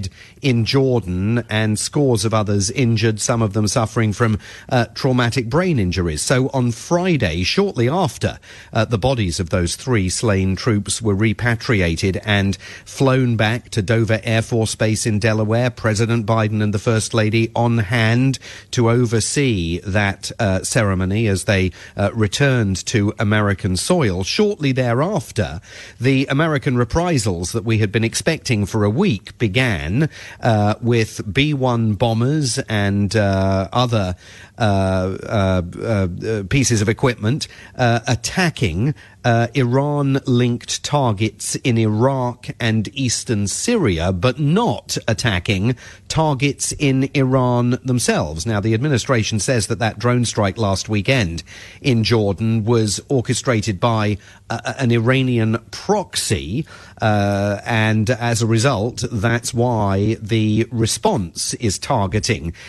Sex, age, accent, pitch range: male, 40-59, British, 105-125 Hz